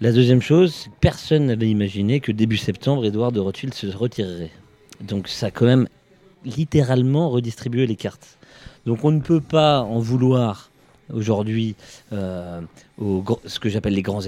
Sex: male